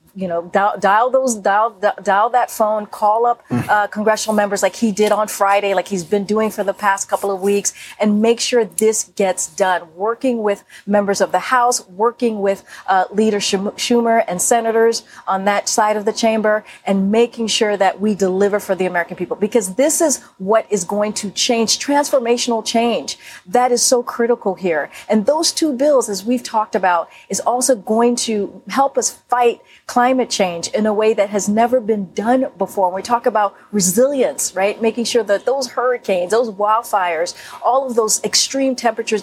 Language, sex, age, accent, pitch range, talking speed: English, female, 40-59, American, 195-240 Hz, 190 wpm